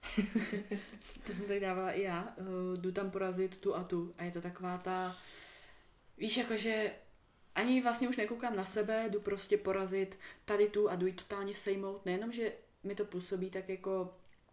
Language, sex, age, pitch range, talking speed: Czech, female, 20-39, 170-205 Hz, 180 wpm